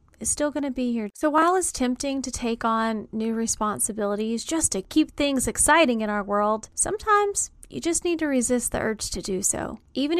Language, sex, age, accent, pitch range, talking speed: English, female, 30-49, American, 225-290 Hz, 200 wpm